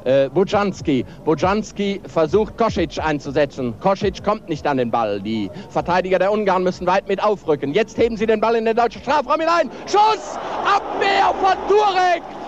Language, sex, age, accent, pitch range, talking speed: German, male, 60-79, German, 195-290 Hz, 165 wpm